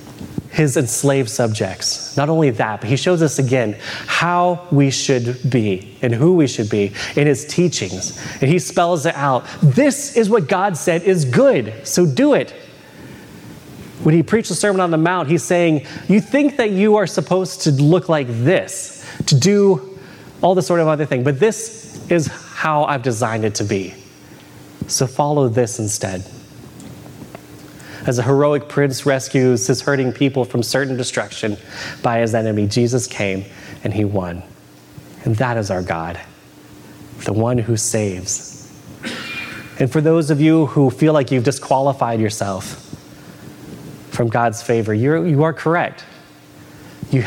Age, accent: 30-49, American